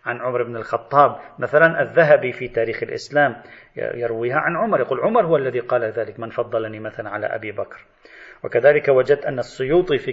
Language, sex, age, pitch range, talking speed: Arabic, male, 40-59, 115-145 Hz, 170 wpm